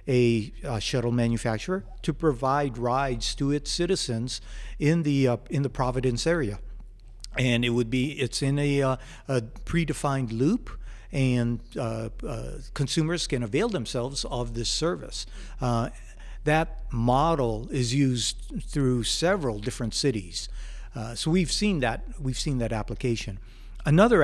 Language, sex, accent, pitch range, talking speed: English, male, American, 115-145 Hz, 140 wpm